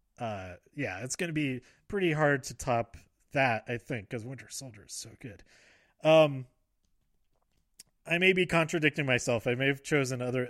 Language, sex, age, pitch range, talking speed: English, male, 30-49, 115-155 Hz, 170 wpm